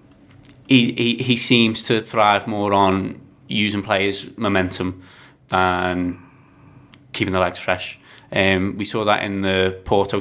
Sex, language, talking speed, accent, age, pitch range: male, English, 135 wpm, British, 20-39, 95-115 Hz